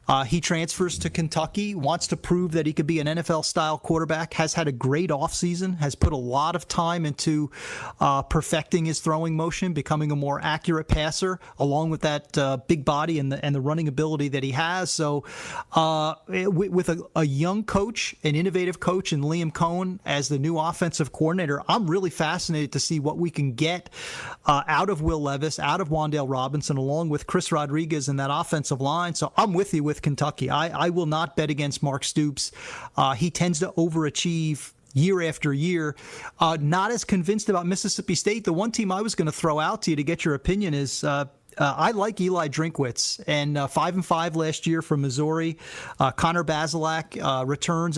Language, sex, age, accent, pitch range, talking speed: English, male, 30-49, American, 145-170 Hz, 200 wpm